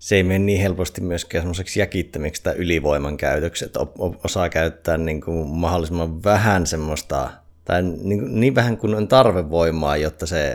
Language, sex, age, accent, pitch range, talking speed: Finnish, male, 30-49, native, 75-95 Hz, 160 wpm